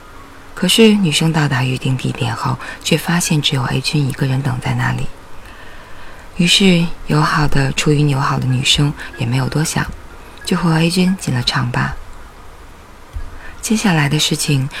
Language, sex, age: Chinese, female, 20-39